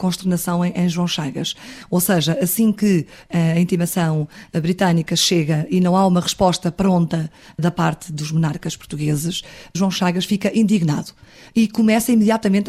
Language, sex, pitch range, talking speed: Portuguese, female, 165-205 Hz, 140 wpm